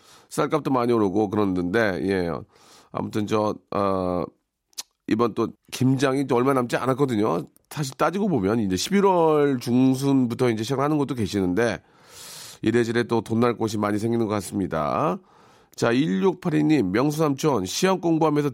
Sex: male